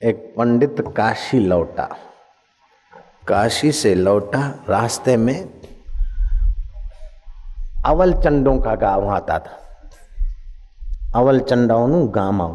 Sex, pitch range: male, 110-145 Hz